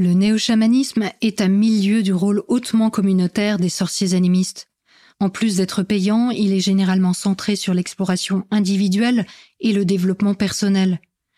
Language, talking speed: French, 140 wpm